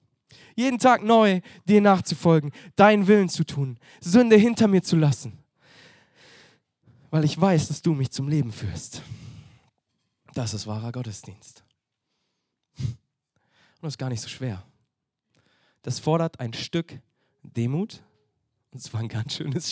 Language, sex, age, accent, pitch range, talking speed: German, male, 20-39, German, 115-155 Hz, 135 wpm